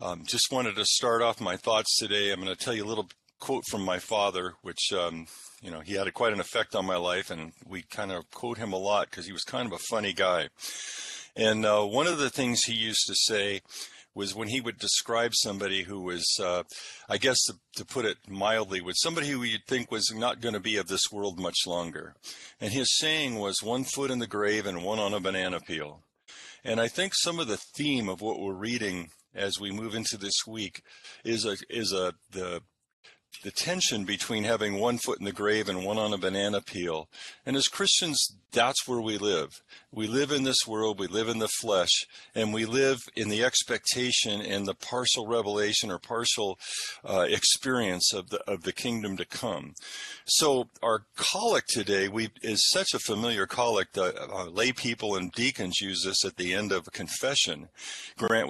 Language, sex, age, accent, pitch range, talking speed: English, male, 50-69, American, 100-120 Hz, 210 wpm